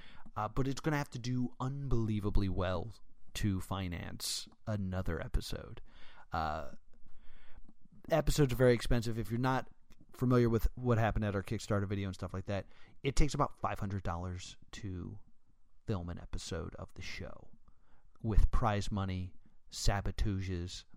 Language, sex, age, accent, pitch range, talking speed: English, male, 30-49, American, 100-140 Hz, 140 wpm